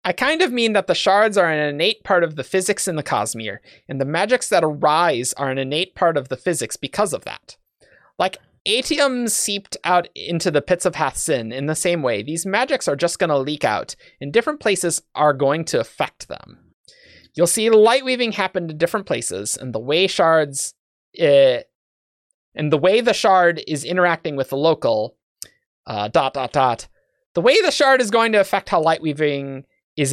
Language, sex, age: English, male, 30-49